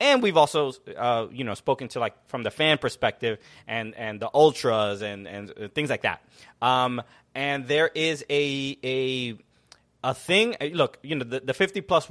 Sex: male